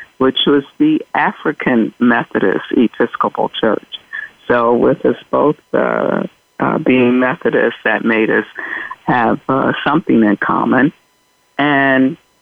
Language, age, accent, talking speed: English, 50-69, American, 115 wpm